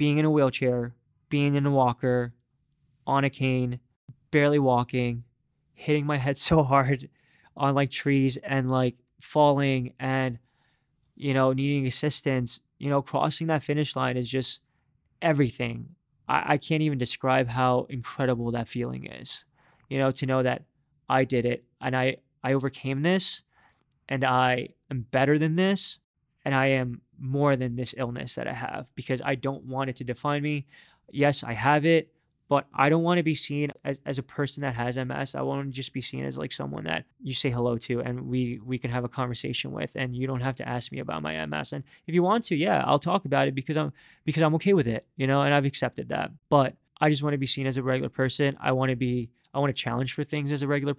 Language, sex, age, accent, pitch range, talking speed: English, male, 20-39, American, 125-145 Hz, 215 wpm